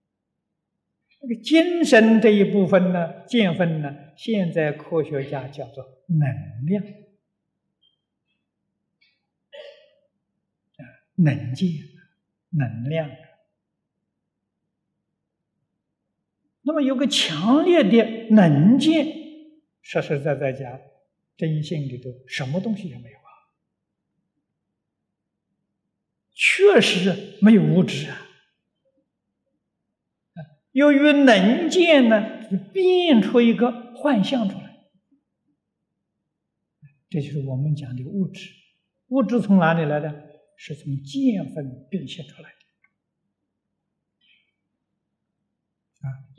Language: Chinese